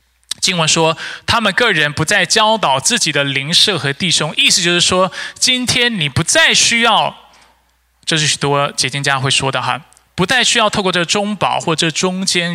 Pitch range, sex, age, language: 130-195 Hz, male, 20-39, Chinese